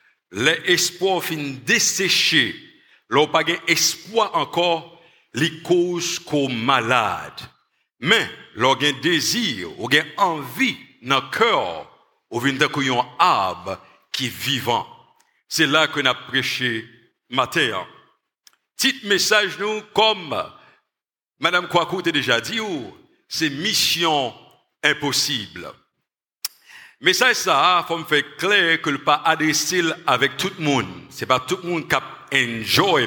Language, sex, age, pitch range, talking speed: English, male, 60-79, 135-175 Hz, 120 wpm